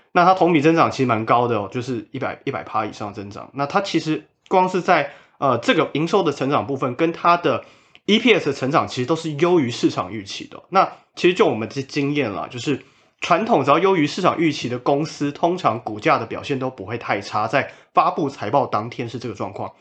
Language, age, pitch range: Chinese, 30-49, 110-155 Hz